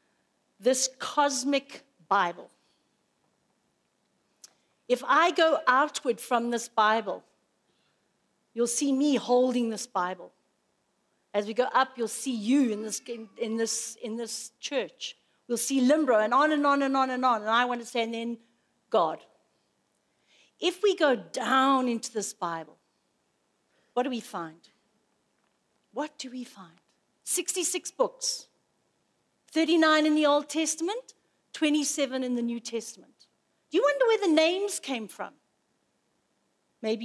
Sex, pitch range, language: female, 235-315 Hz, English